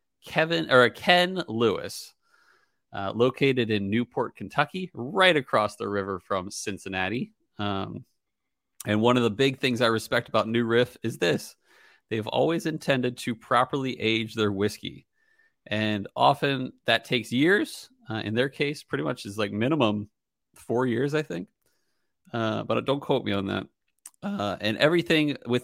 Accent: American